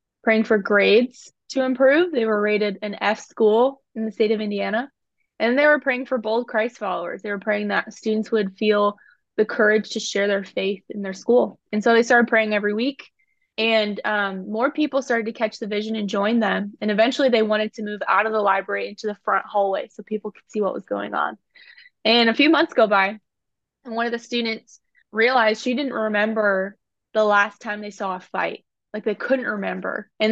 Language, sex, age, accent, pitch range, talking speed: English, female, 20-39, American, 205-240 Hz, 215 wpm